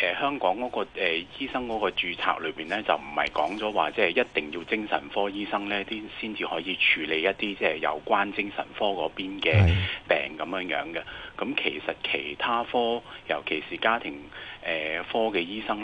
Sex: male